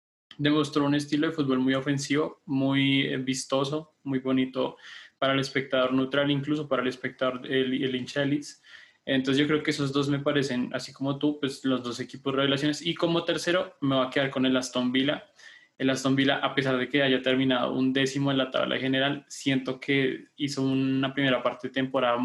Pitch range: 130-140 Hz